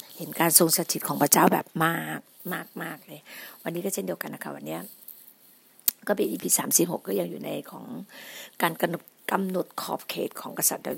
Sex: female